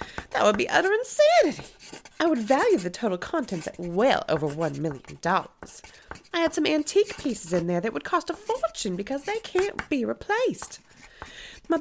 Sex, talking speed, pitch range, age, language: female, 175 wpm, 200-330 Hz, 30-49, English